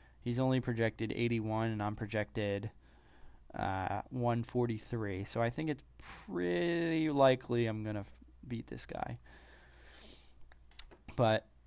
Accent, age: American, 20-39